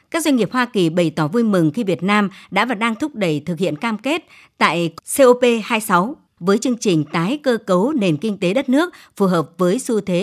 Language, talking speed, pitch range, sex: Vietnamese, 230 wpm, 175-230 Hz, male